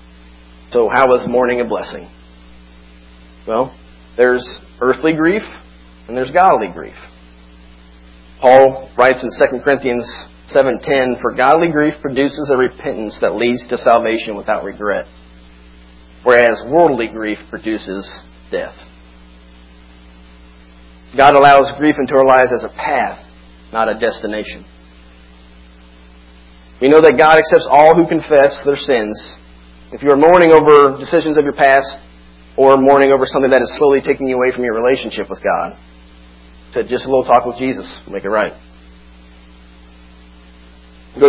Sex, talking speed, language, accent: male, 135 wpm, English, American